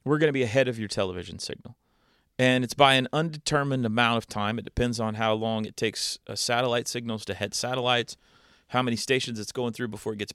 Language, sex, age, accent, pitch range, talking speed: English, male, 30-49, American, 110-130 Hz, 220 wpm